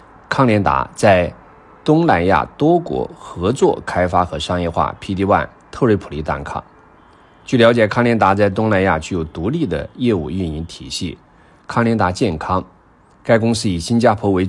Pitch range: 85-115 Hz